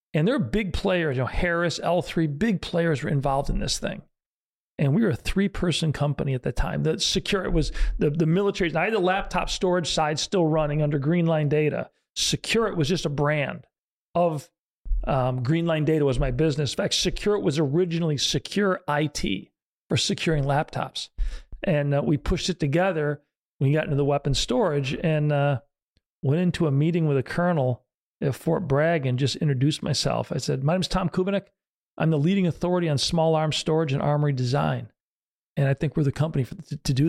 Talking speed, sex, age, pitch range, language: 200 wpm, male, 40-59, 145-180 Hz, English